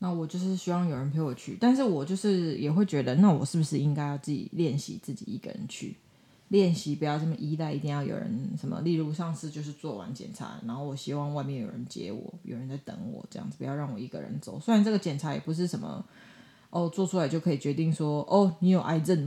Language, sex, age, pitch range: Chinese, female, 20-39, 150-190 Hz